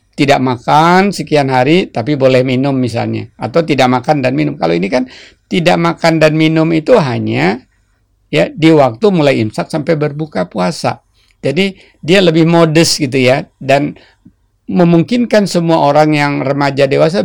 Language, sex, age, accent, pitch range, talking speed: Indonesian, male, 50-69, native, 120-150 Hz, 150 wpm